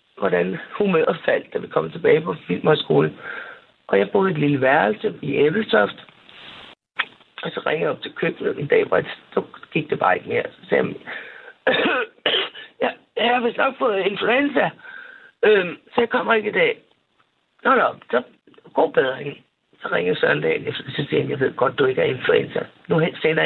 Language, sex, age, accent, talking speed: Danish, male, 60-79, native, 185 wpm